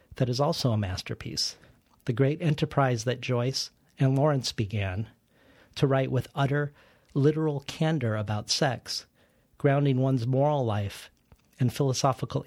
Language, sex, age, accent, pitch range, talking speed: English, male, 40-59, American, 115-140 Hz, 130 wpm